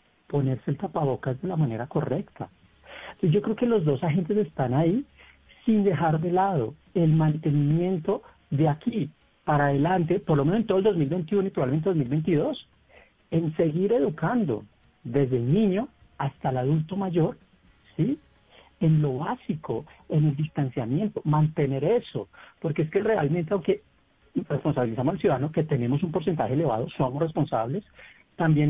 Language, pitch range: Spanish, 135-170 Hz